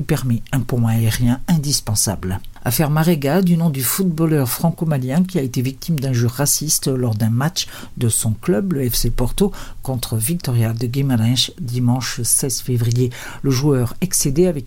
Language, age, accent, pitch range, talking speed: Portuguese, 50-69, French, 120-160 Hz, 160 wpm